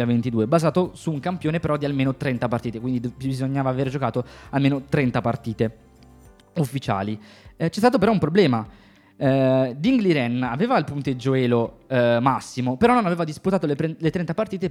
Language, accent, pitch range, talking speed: Italian, native, 125-165 Hz, 170 wpm